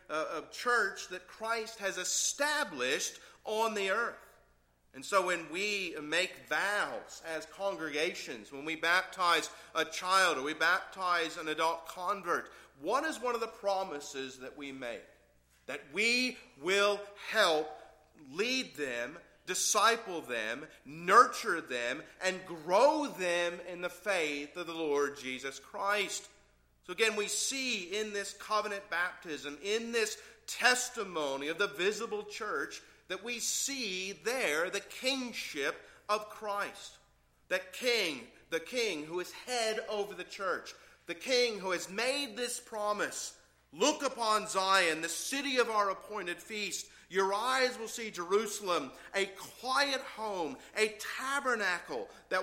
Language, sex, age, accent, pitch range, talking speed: English, male, 40-59, American, 175-225 Hz, 135 wpm